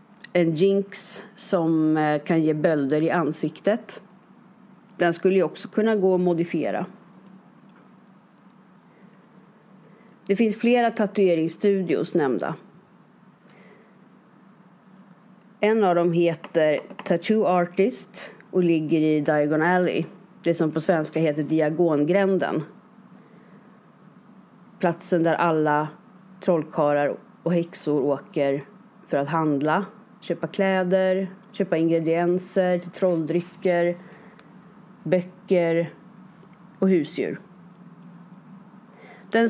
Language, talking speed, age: Swedish, 85 wpm, 30-49